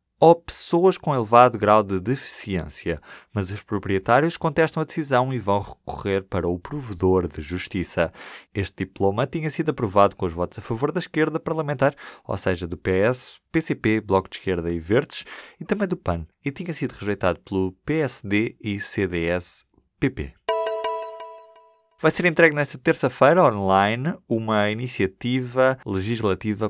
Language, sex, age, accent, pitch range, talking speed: Portuguese, male, 20-39, Brazilian, 95-130 Hz, 145 wpm